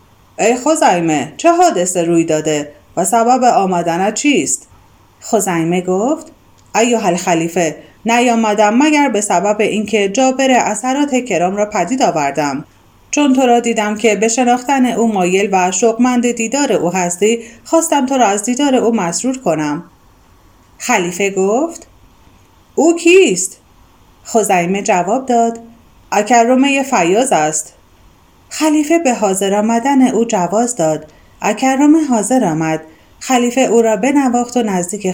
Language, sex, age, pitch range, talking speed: Persian, female, 30-49, 185-270 Hz, 125 wpm